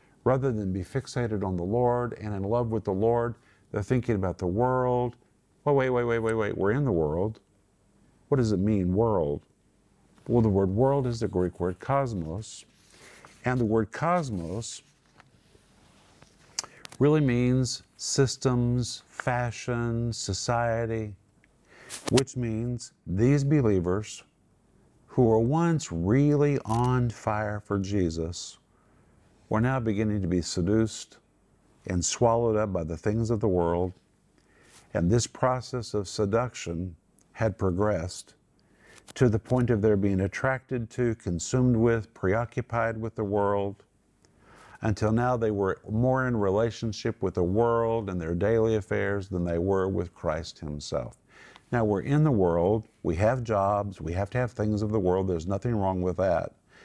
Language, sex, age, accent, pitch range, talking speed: English, male, 50-69, American, 95-120 Hz, 150 wpm